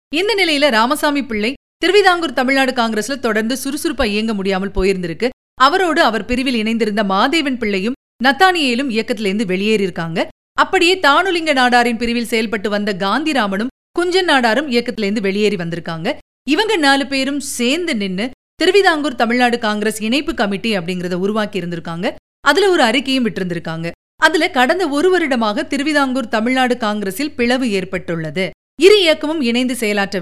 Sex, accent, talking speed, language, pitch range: female, native, 125 wpm, Tamil, 200-285 Hz